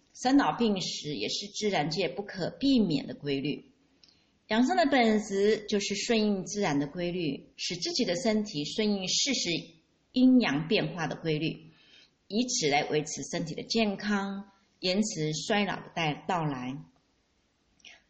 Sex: female